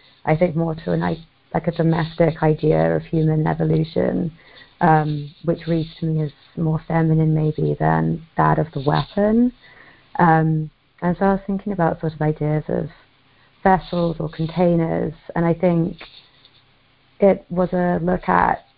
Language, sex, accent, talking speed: English, female, British, 145 wpm